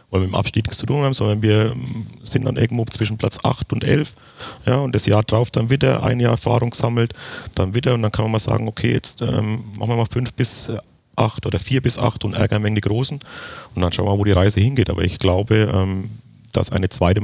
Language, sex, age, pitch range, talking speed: German, male, 40-59, 95-120 Hz, 245 wpm